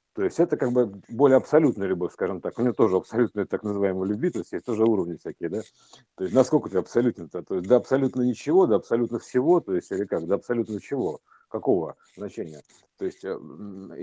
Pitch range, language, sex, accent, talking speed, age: 110-150 Hz, Russian, male, native, 195 wpm, 50-69